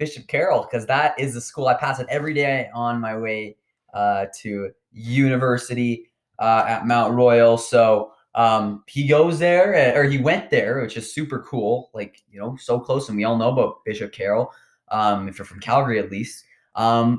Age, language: 20-39, English